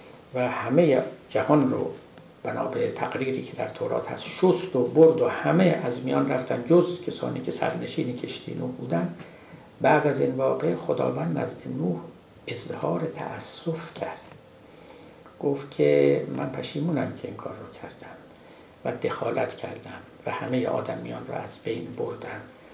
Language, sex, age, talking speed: Persian, male, 60-79, 145 wpm